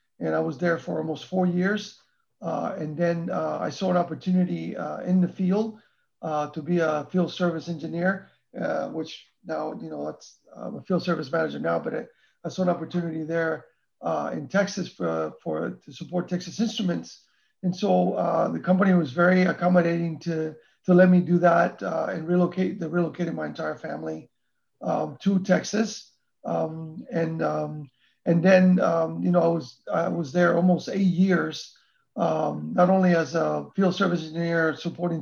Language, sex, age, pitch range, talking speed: English, male, 40-59, 165-190 Hz, 175 wpm